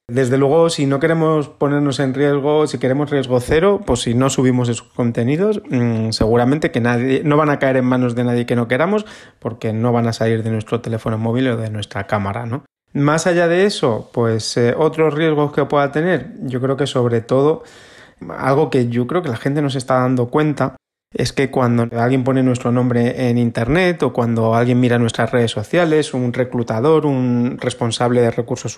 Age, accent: 30-49, Spanish